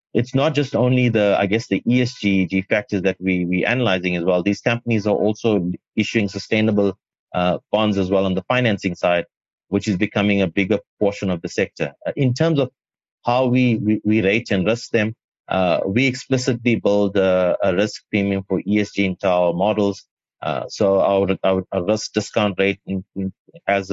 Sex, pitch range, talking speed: male, 95-115 Hz, 180 wpm